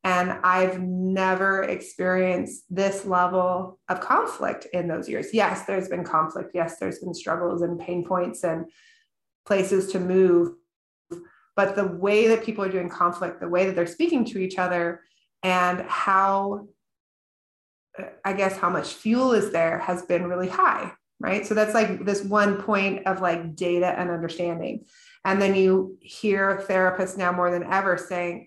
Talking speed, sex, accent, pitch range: 160 wpm, female, American, 175-195 Hz